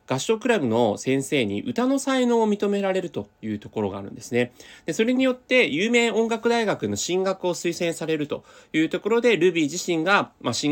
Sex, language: male, Japanese